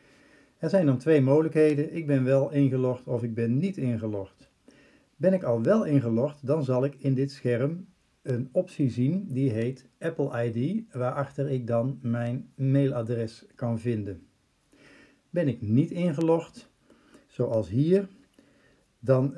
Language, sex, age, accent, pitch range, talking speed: Dutch, male, 50-69, Dutch, 120-145 Hz, 140 wpm